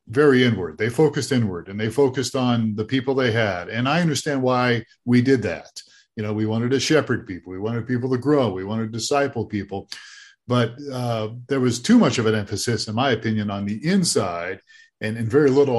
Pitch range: 105-130 Hz